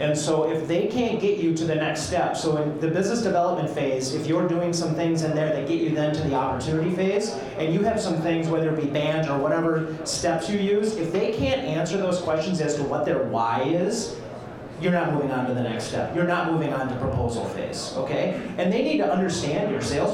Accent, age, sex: American, 30-49, male